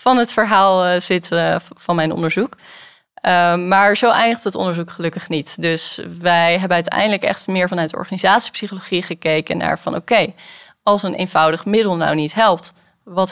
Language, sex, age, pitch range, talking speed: Dutch, female, 10-29, 170-205 Hz, 160 wpm